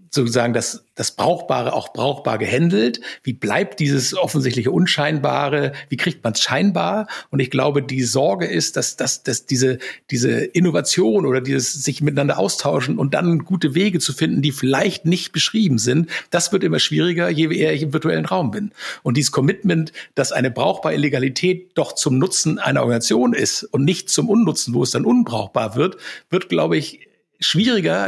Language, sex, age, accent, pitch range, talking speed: German, male, 60-79, German, 130-175 Hz, 175 wpm